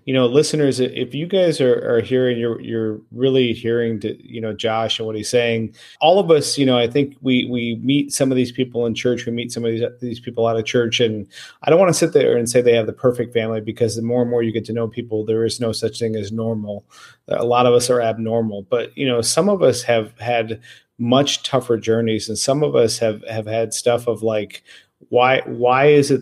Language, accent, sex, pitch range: English, American, male, 110-125 Hz